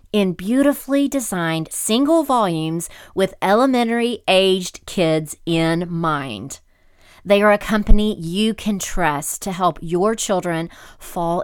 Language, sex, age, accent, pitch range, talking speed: English, female, 40-59, American, 165-230 Hz, 115 wpm